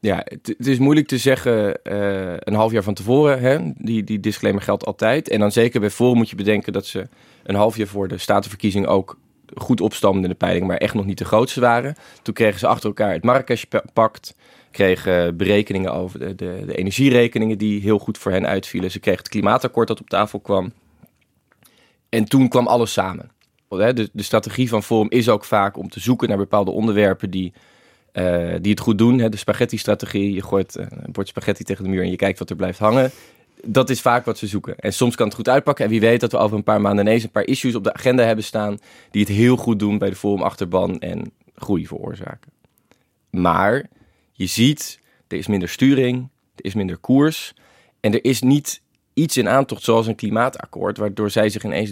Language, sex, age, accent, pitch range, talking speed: Dutch, male, 20-39, Dutch, 100-120 Hz, 215 wpm